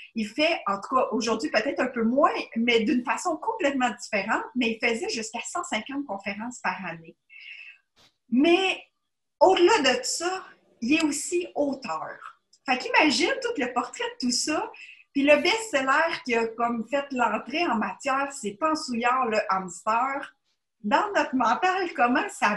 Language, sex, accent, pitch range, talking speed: French, female, Canadian, 225-305 Hz, 155 wpm